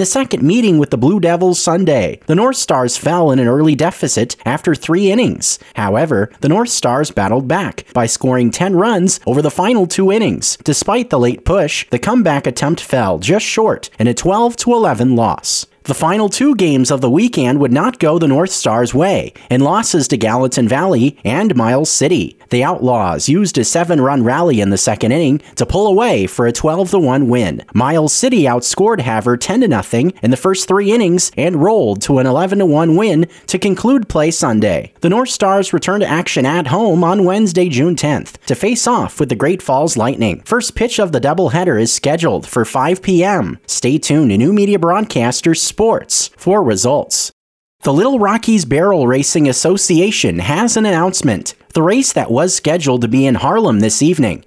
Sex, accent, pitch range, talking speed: male, American, 130-195 Hz, 185 wpm